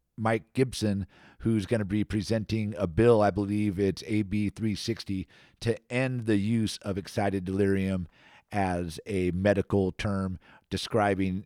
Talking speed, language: 135 wpm, English